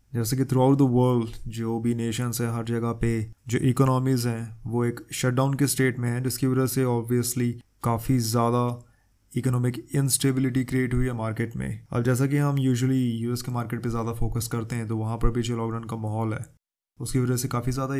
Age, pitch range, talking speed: 20-39, 120-130 Hz, 210 wpm